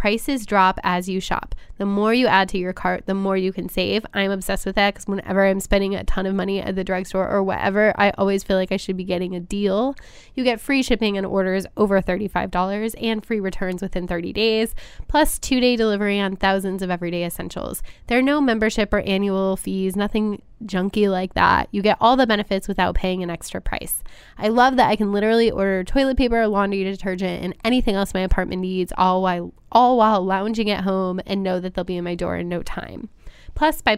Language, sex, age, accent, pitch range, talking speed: English, female, 10-29, American, 190-220 Hz, 220 wpm